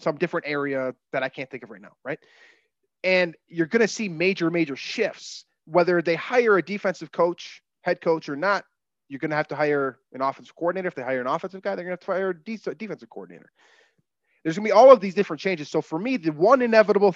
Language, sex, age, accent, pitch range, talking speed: English, male, 30-49, American, 140-185 Hz, 230 wpm